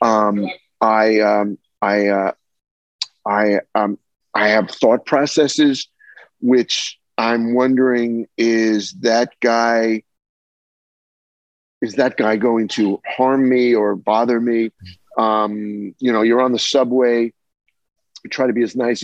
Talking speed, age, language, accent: 125 wpm, 50-69, English, American